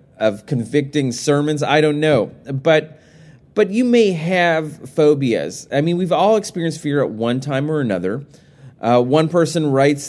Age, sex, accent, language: 30-49, male, American, English